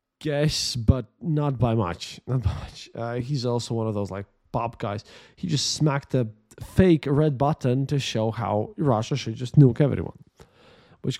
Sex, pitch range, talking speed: male, 115-150 Hz, 170 wpm